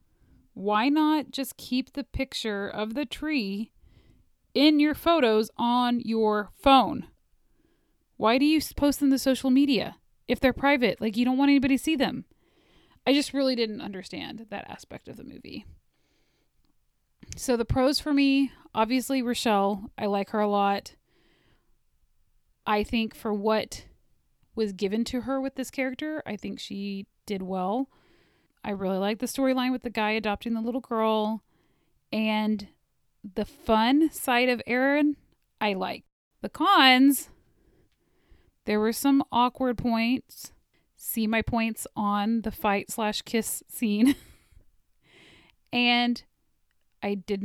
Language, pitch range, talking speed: English, 210-270 Hz, 140 wpm